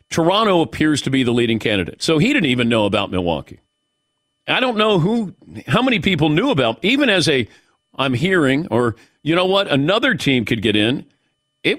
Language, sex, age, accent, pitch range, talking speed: English, male, 50-69, American, 120-165 Hz, 195 wpm